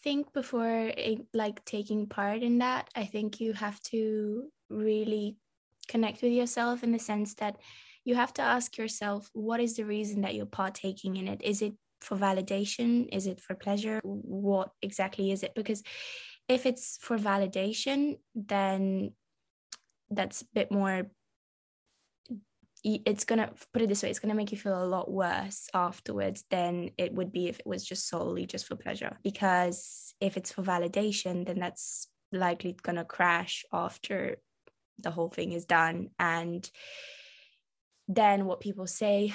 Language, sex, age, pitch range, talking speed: English, female, 10-29, 180-215 Hz, 165 wpm